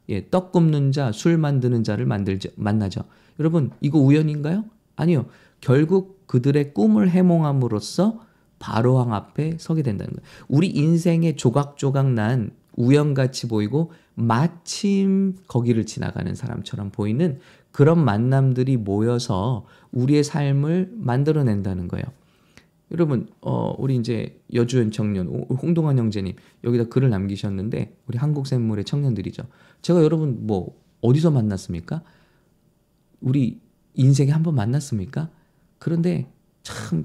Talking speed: 100 wpm